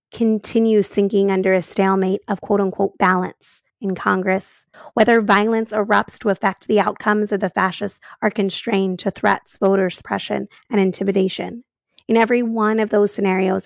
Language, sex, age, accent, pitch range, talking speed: English, female, 20-39, American, 190-210 Hz, 150 wpm